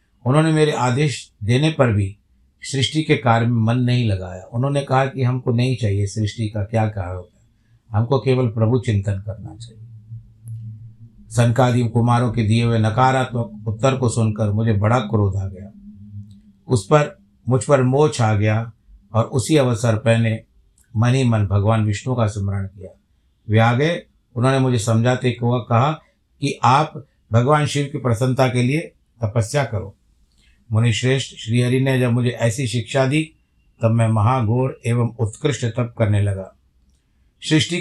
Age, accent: 50-69, native